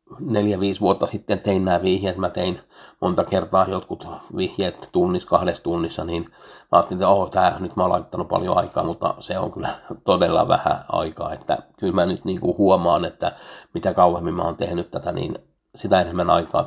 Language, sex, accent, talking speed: Finnish, male, native, 185 wpm